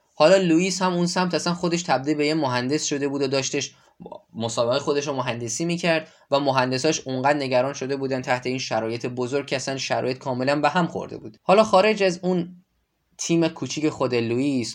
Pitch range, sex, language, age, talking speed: 115-150 Hz, male, Persian, 10-29, 185 wpm